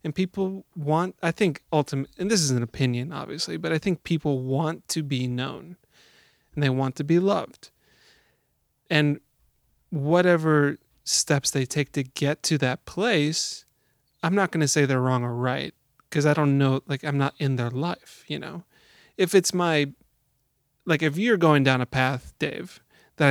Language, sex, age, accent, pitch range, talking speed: English, male, 30-49, American, 135-170 Hz, 180 wpm